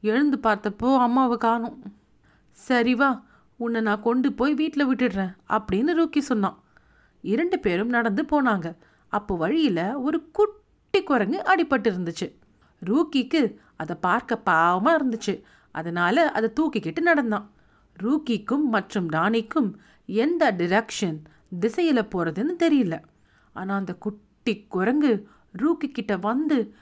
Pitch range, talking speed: 195-295 Hz, 105 wpm